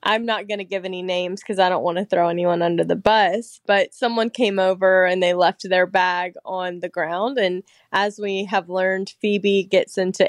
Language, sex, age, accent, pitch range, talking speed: English, female, 20-39, American, 185-225 Hz, 215 wpm